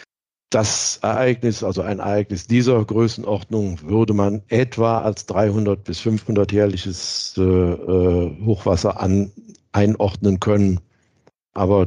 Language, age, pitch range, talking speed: German, 60-79, 90-110 Hz, 90 wpm